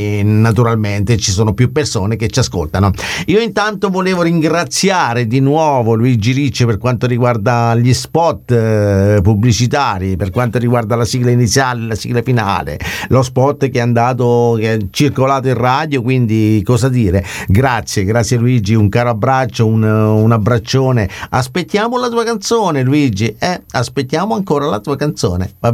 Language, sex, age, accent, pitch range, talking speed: Italian, male, 50-69, native, 110-140 Hz, 155 wpm